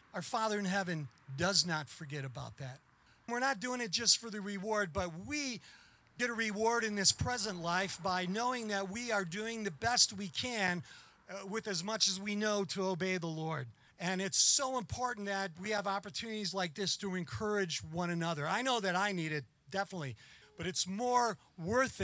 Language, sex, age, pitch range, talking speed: English, male, 50-69, 165-210 Hz, 195 wpm